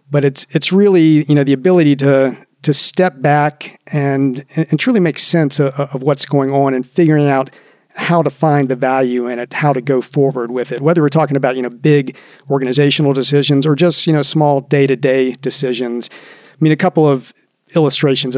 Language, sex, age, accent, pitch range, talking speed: English, male, 40-59, American, 135-155 Hz, 195 wpm